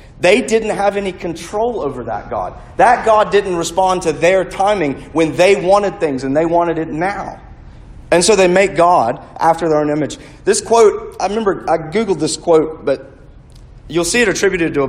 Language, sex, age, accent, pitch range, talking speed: English, male, 40-59, American, 135-185 Hz, 195 wpm